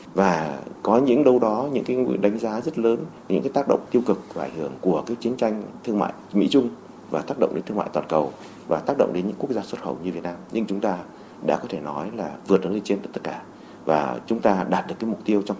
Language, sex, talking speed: Vietnamese, male, 270 wpm